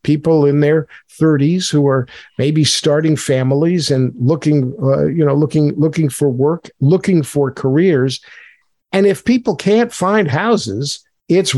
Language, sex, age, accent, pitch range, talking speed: English, male, 50-69, American, 140-170 Hz, 145 wpm